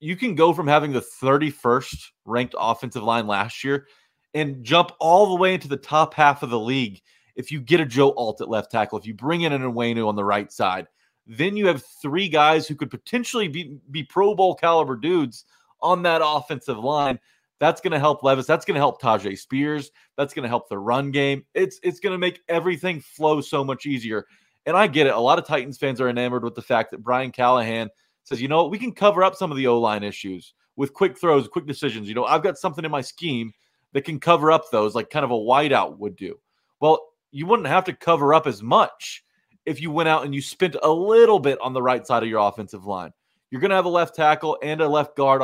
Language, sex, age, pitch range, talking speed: English, male, 30-49, 120-160 Hz, 240 wpm